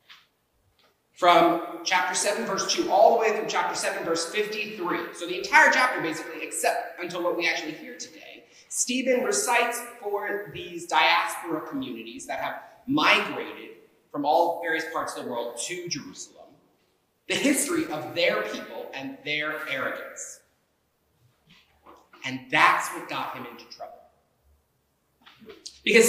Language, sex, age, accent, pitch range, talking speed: English, male, 30-49, American, 165-245 Hz, 135 wpm